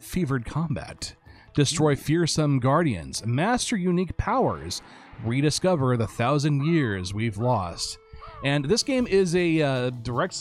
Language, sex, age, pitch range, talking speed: English, male, 30-49, 115-160 Hz, 120 wpm